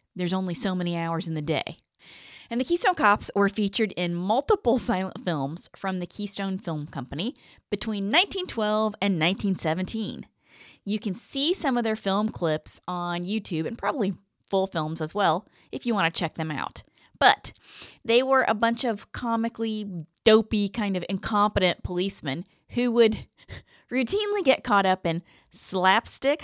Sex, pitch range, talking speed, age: female, 180-235 Hz, 160 wpm, 30-49